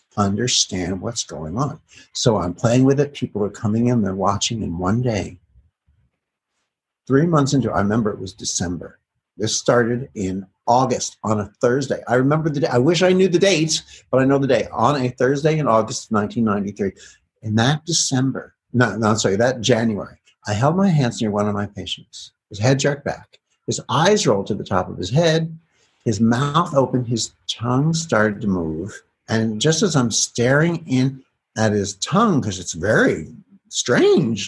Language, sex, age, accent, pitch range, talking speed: English, male, 60-79, American, 105-140 Hz, 185 wpm